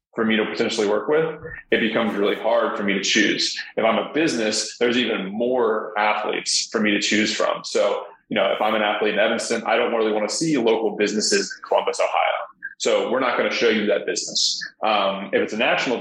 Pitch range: 105-115 Hz